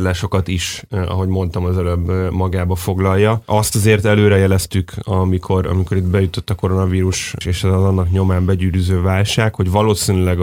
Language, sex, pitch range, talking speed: Hungarian, male, 90-105 Hz, 150 wpm